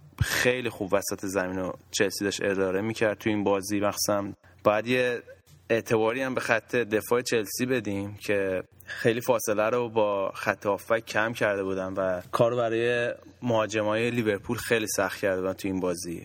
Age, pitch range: 20-39, 100-115 Hz